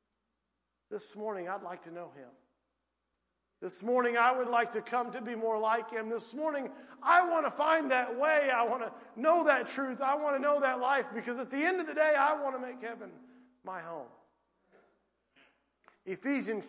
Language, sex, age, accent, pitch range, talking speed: English, male, 40-59, American, 155-240 Hz, 195 wpm